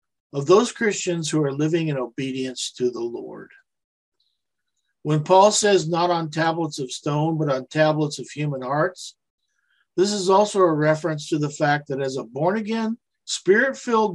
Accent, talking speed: American, 160 wpm